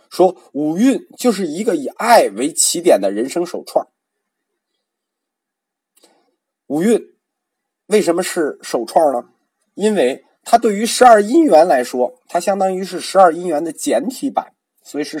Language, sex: Chinese, male